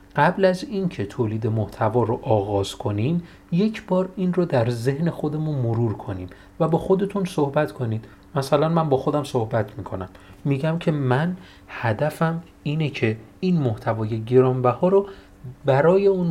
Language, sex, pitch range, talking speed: Persian, male, 110-160 Hz, 155 wpm